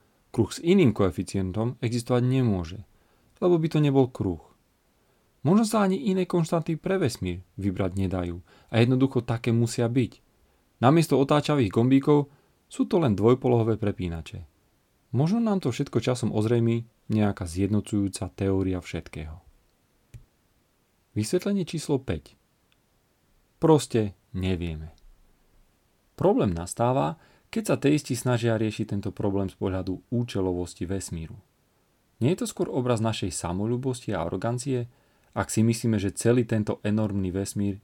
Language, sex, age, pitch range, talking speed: Slovak, male, 30-49, 95-130 Hz, 125 wpm